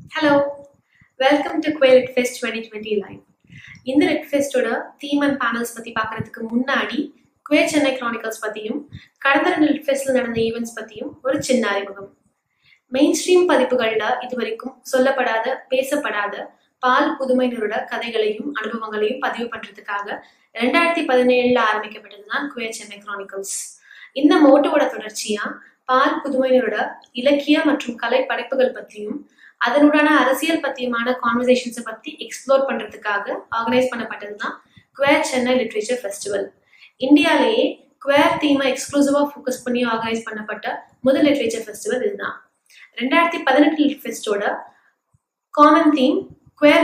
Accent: native